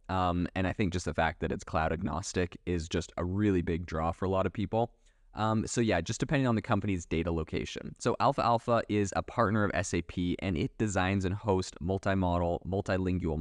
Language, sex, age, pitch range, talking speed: English, male, 20-39, 90-105 Hz, 210 wpm